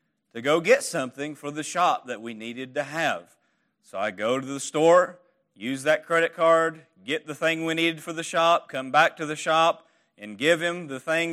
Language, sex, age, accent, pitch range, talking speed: English, male, 40-59, American, 160-255 Hz, 210 wpm